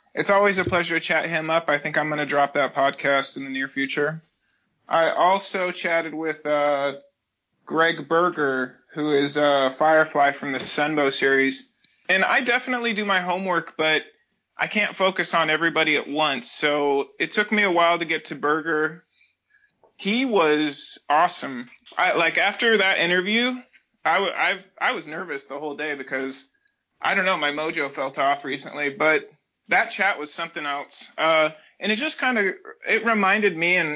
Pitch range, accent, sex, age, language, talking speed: 145-180 Hz, American, male, 30-49, English, 175 wpm